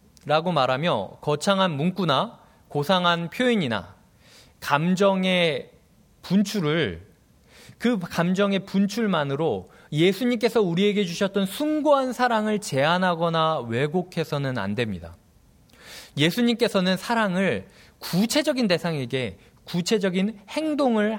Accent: native